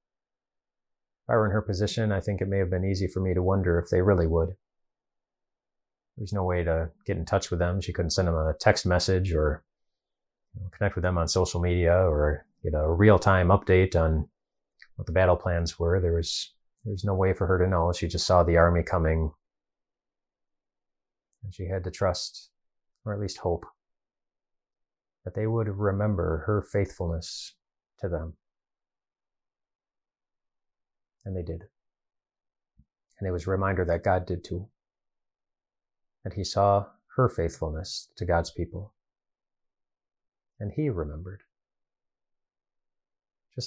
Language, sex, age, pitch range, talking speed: English, male, 30-49, 85-100 Hz, 160 wpm